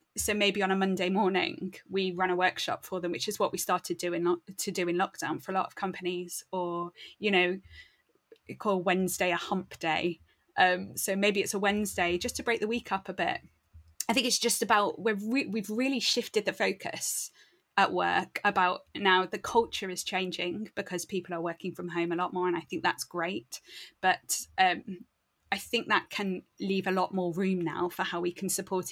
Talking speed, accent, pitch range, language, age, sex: 210 wpm, British, 175-200 Hz, English, 20-39, female